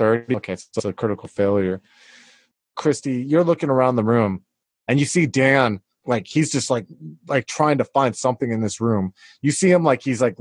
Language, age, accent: English, 20-39, American